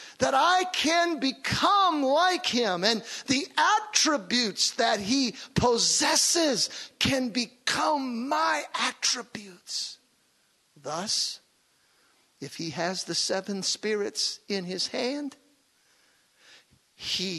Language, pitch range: English, 175-250 Hz